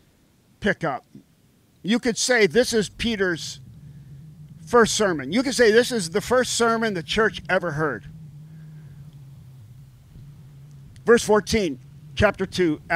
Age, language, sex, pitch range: 50-69, English, male, 180-255 Hz